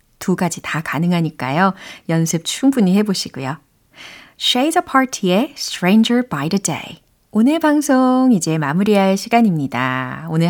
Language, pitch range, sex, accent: Korean, 160-245 Hz, female, native